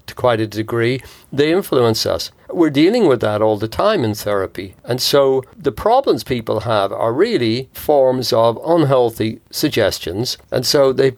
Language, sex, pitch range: English, male, 105-130 Hz